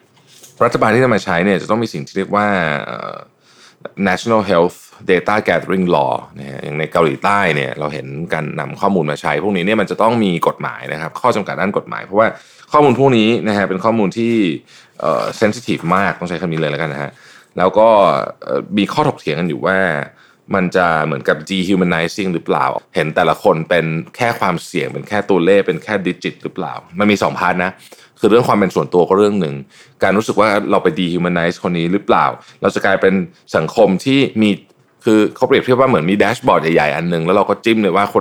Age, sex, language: 20-39, male, Thai